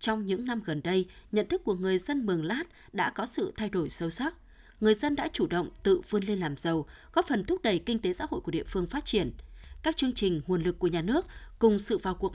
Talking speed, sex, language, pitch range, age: 260 wpm, female, Vietnamese, 180-250 Hz, 20-39